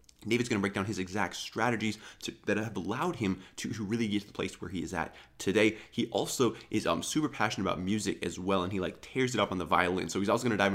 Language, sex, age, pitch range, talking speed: English, male, 20-39, 95-110 Hz, 275 wpm